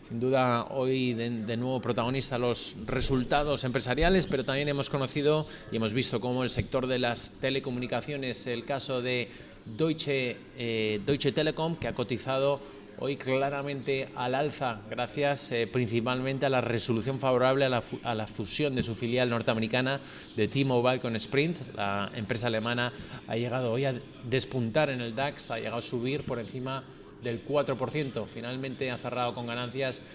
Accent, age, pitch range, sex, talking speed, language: Spanish, 30-49, 120-140 Hz, male, 155 wpm, Spanish